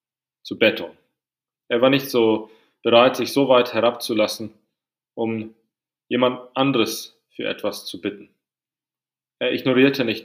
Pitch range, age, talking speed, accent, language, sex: 110-130 Hz, 30-49, 125 wpm, German, English, male